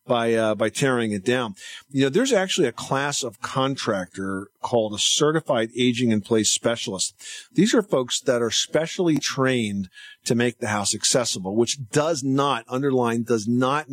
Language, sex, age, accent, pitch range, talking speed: English, male, 50-69, American, 110-145 Hz, 170 wpm